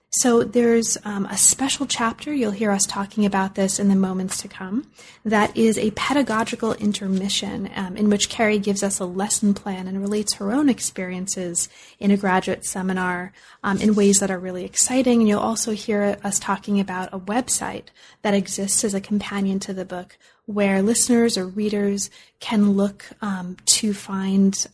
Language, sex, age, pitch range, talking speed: English, female, 30-49, 195-230 Hz, 175 wpm